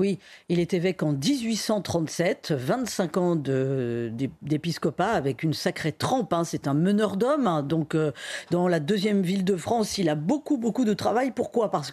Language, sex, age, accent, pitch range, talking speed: French, female, 40-59, French, 180-240 Hz, 185 wpm